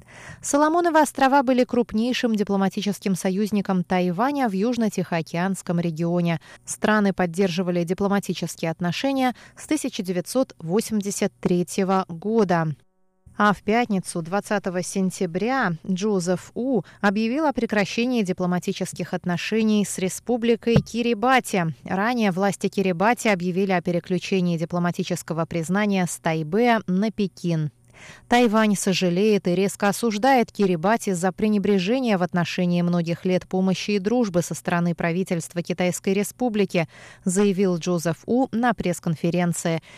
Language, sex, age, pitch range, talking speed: Russian, female, 20-39, 175-225 Hz, 105 wpm